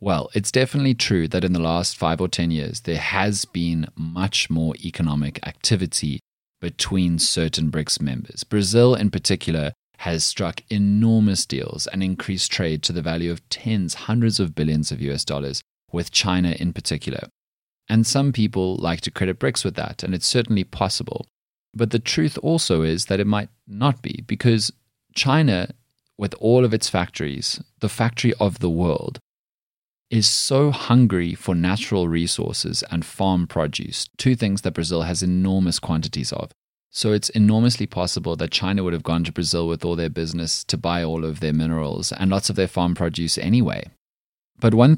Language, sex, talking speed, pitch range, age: English, male, 175 wpm, 85-115 Hz, 30-49